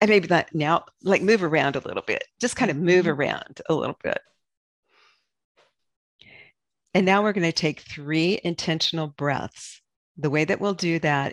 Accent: American